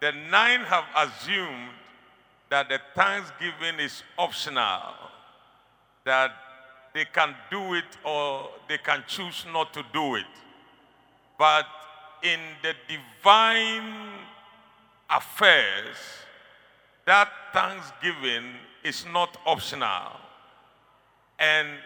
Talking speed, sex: 90 wpm, male